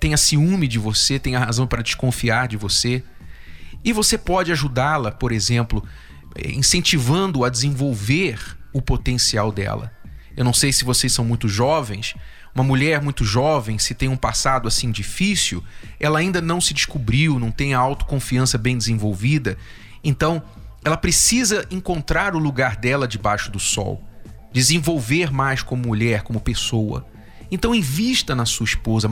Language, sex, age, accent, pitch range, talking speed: Portuguese, male, 40-59, Brazilian, 110-150 Hz, 150 wpm